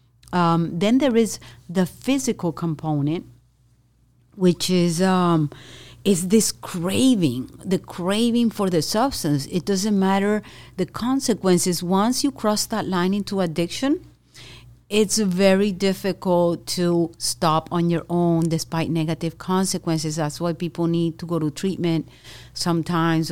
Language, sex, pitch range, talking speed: English, female, 150-180 Hz, 130 wpm